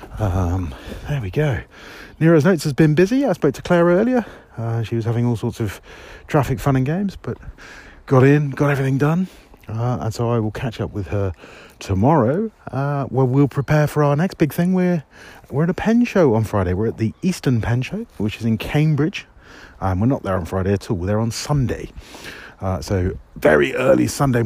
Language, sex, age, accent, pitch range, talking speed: English, male, 40-59, British, 110-150 Hz, 210 wpm